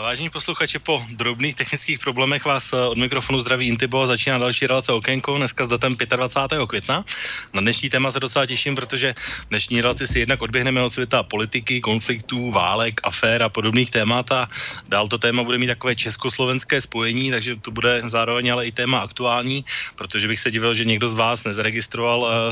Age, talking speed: 20-39, 180 wpm